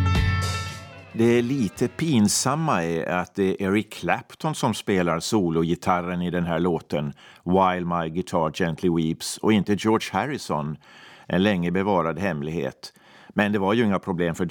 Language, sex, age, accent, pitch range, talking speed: Swedish, male, 50-69, native, 90-115 Hz, 155 wpm